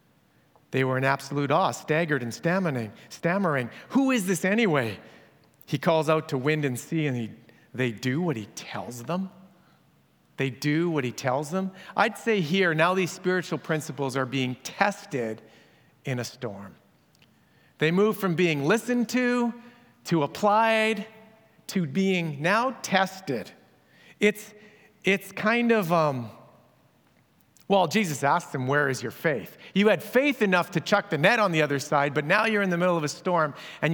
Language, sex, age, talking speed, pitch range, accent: English, male, 40-59, 165 wpm, 145-200 Hz, American